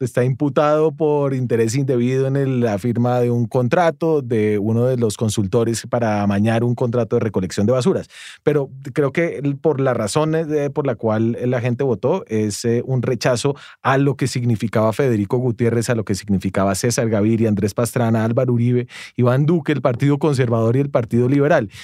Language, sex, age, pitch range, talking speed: English, male, 30-49, 115-145 Hz, 175 wpm